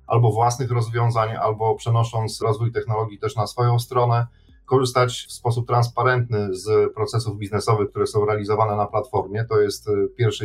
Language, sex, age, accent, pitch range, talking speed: Polish, male, 40-59, native, 110-125 Hz, 150 wpm